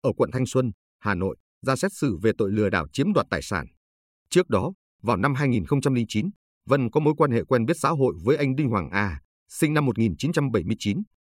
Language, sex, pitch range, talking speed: Vietnamese, male, 95-140 Hz, 210 wpm